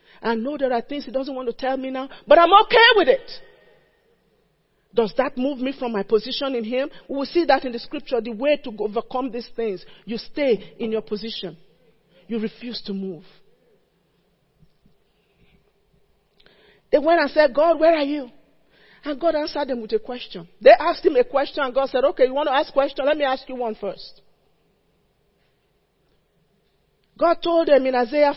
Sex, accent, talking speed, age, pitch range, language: male, Nigerian, 190 wpm, 40-59, 230-295 Hz, English